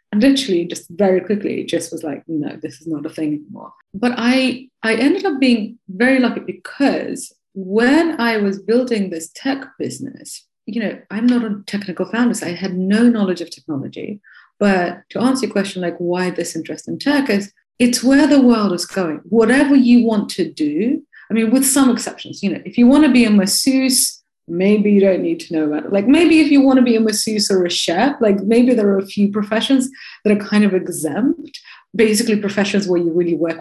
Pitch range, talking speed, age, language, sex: 180-250 Hz, 215 wpm, 30-49, English, female